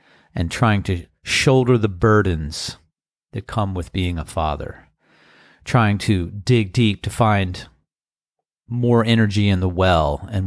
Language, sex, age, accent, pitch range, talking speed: English, male, 40-59, American, 90-115 Hz, 140 wpm